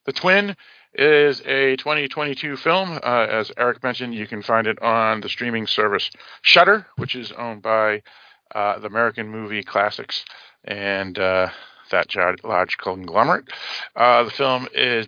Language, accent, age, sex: English, American, 40-59, male